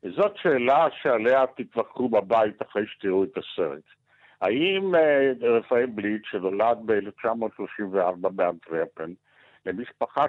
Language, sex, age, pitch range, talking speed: Hebrew, male, 60-79, 105-130 Hz, 95 wpm